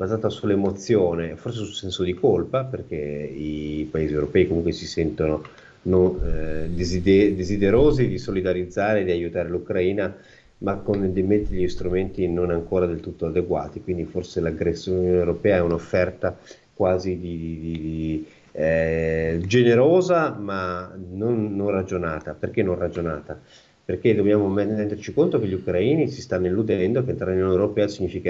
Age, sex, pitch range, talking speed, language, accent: 30-49, male, 80-100 Hz, 140 wpm, Italian, native